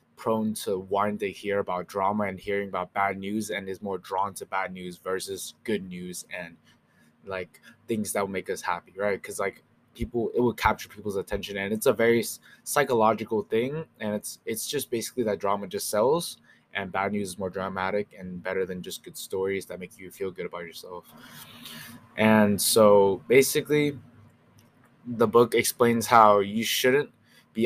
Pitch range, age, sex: 95-115 Hz, 20-39, male